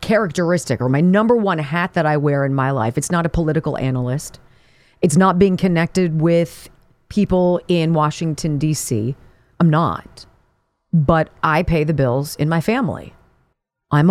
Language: English